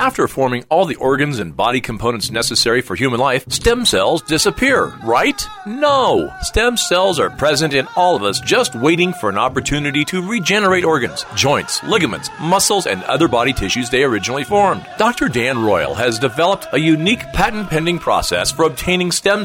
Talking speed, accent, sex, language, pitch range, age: 170 wpm, American, male, English, 135-190 Hz, 40-59